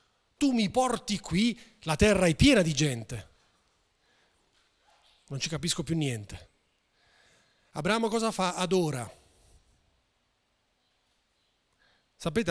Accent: native